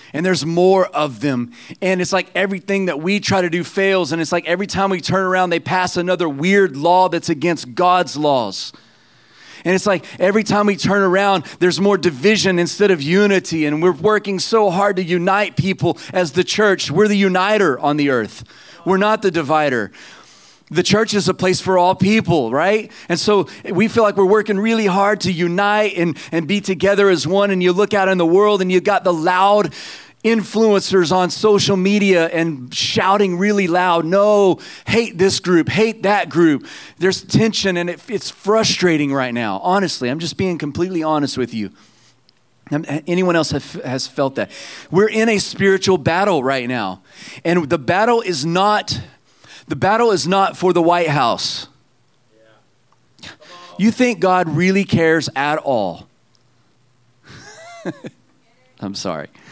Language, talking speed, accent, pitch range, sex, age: English, 170 wpm, American, 165-200 Hz, male, 30-49